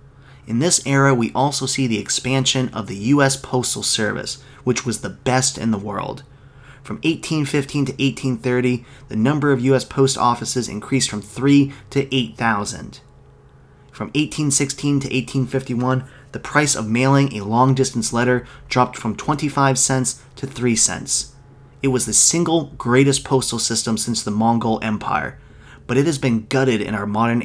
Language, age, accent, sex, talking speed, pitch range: English, 30-49, American, male, 155 wpm, 115-135 Hz